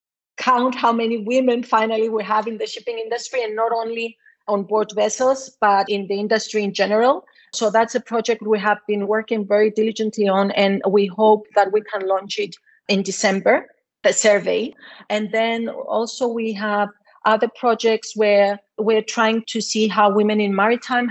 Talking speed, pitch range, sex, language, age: 175 wpm, 205-230 Hz, female, English, 40-59